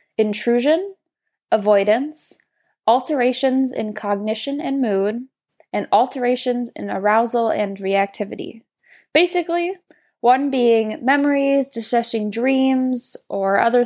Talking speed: 90 wpm